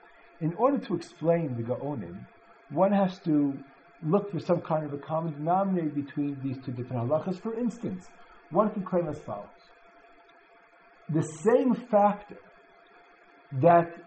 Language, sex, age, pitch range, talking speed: English, male, 50-69, 140-200 Hz, 140 wpm